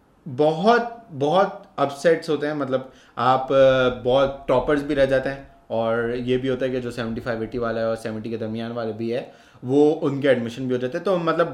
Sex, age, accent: male, 30-49, Indian